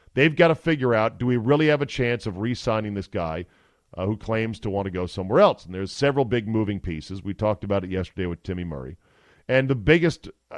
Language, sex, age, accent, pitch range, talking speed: English, male, 40-59, American, 95-135 Hz, 235 wpm